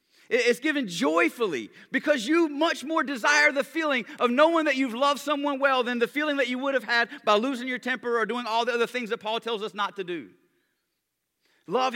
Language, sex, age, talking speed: English, male, 40-59, 215 wpm